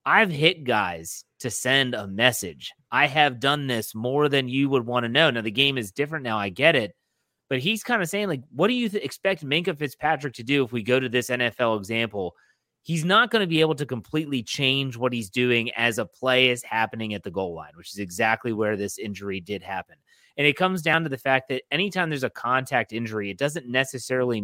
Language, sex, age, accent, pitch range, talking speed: English, male, 30-49, American, 115-150 Hz, 230 wpm